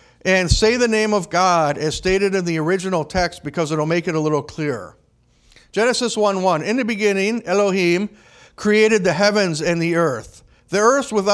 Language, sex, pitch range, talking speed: English, male, 165-210 Hz, 175 wpm